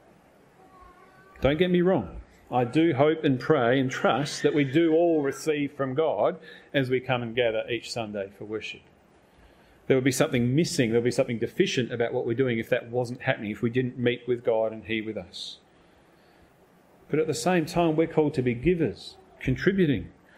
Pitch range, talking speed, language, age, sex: 120-155 Hz, 195 wpm, English, 40-59, male